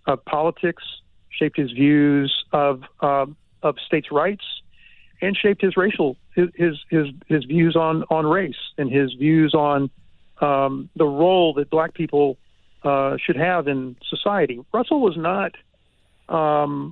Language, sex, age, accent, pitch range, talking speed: English, male, 50-69, American, 150-180 Hz, 140 wpm